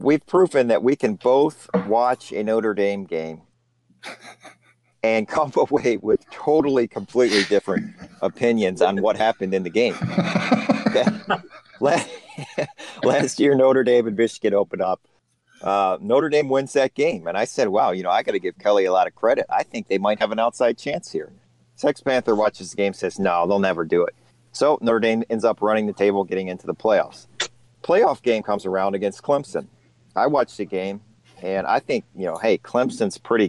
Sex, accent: male, American